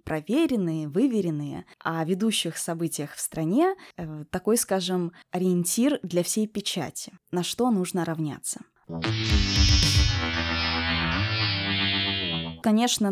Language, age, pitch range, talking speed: Russian, 20-39, 160-210 Hz, 80 wpm